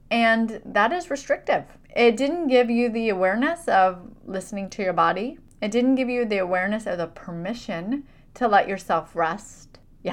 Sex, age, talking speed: female, 30-49, 170 wpm